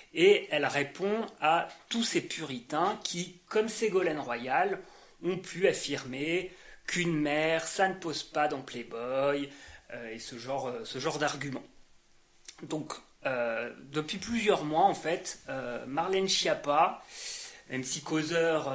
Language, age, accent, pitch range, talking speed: French, 30-49, French, 145-210 Hz, 135 wpm